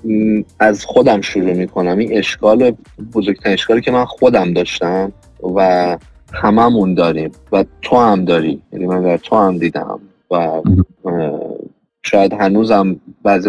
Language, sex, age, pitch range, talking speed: Persian, male, 30-49, 105-140 Hz, 130 wpm